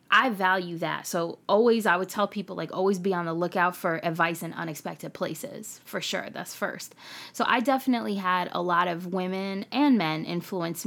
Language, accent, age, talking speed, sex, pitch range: English, American, 20-39, 195 wpm, female, 170-190 Hz